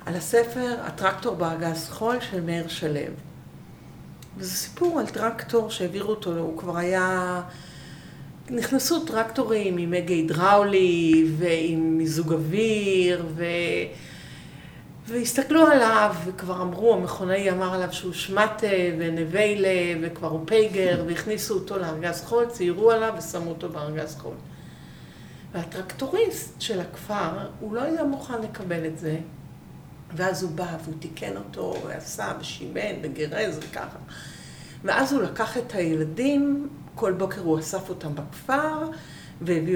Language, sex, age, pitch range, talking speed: Hebrew, female, 50-69, 165-215 Hz, 125 wpm